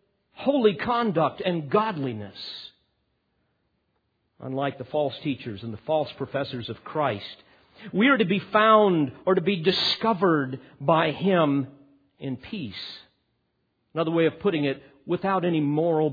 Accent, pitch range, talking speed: American, 130-190 Hz, 130 wpm